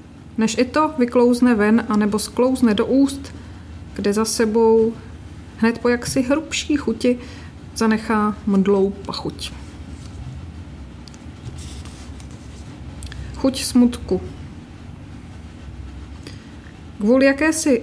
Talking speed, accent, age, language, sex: 80 wpm, native, 40-59, Czech, female